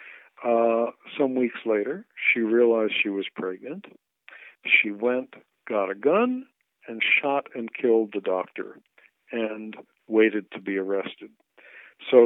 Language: English